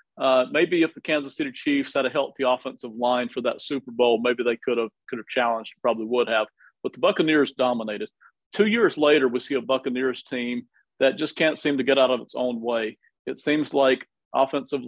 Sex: male